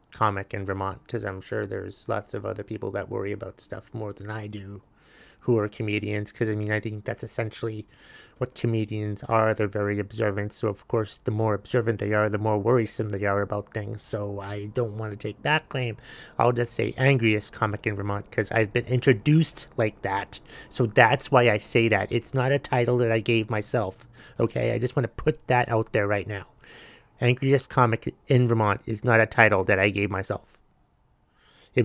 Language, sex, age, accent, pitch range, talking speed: English, male, 30-49, American, 105-125 Hz, 205 wpm